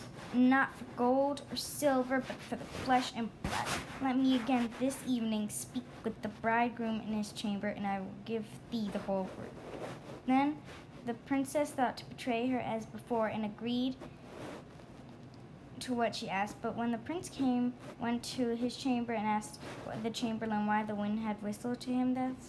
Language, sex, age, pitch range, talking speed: English, female, 20-39, 215-245 Hz, 180 wpm